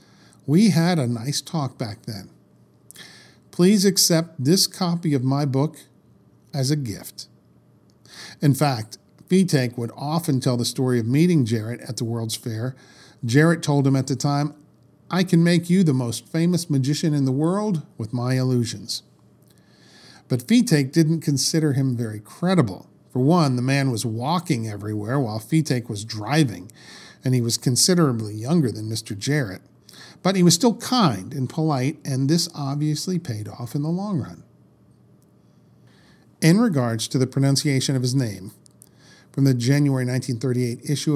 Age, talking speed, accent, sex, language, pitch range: 50-69, 155 wpm, American, male, English, 125-165 Hz